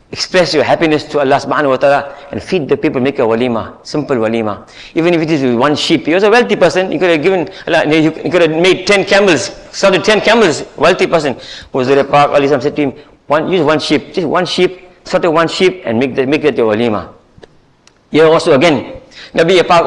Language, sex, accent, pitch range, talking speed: English, male, Indian, 155-230 Hz, 210 wpm